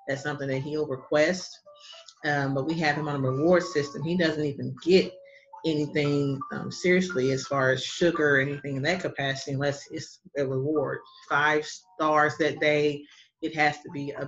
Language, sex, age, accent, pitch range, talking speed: English, female, 30-49, American, 145-210 Hz, 180 wpm